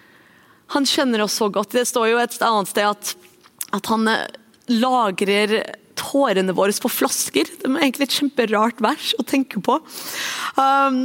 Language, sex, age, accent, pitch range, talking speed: English, female, 30-49, Swedish, 200-240 Hz, 150 wpm